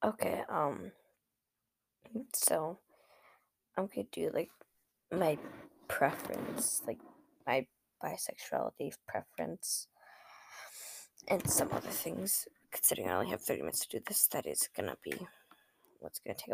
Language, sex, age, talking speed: English, female, 10-29, 130 wpm